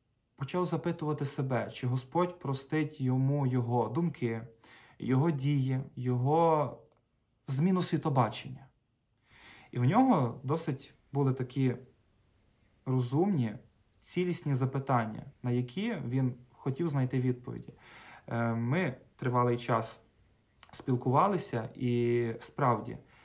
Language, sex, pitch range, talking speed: Ukrainian, male, 120-150 Hz, 90 wpm